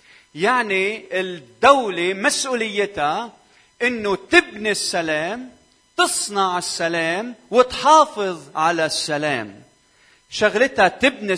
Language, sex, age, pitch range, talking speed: Arabic, male, 40-59, 165-215 Hz, 70 wpm